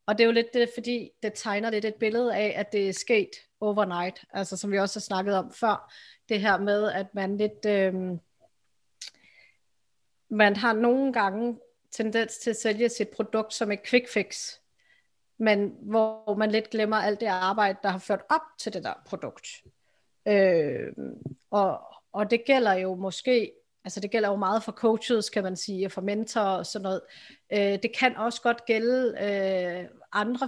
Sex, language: female, Danish